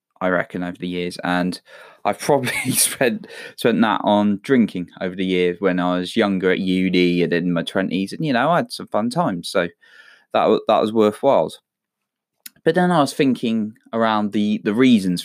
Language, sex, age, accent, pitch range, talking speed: English, male, 20-39, British, 95-110 Hz, 190 wpm